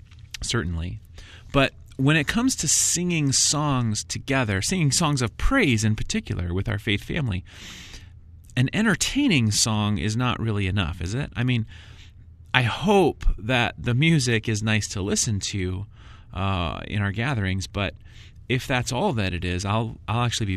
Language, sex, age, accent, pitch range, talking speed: English, male, 30-49, American, 95-125 Hz, 160 wpm